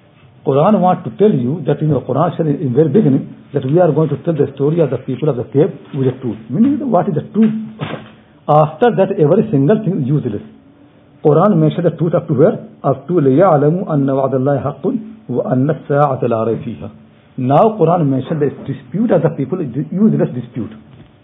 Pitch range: 135-180 Hz